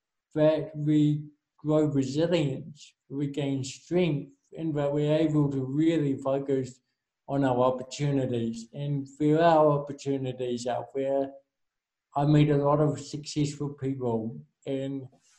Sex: male